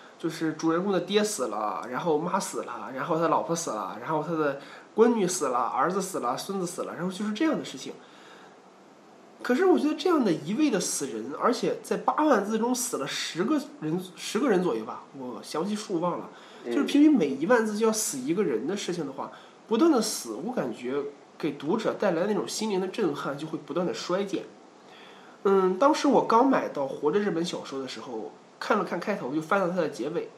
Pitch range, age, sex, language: 170-245 Hz, 20-39, male, Chinese